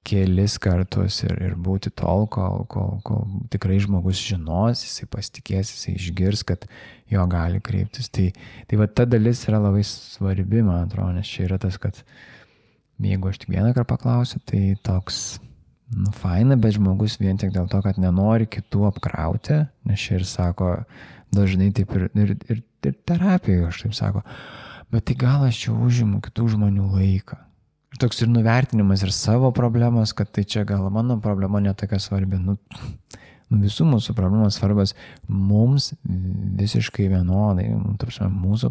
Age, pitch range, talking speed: 20-39, 95-115 Hz, 160 wpm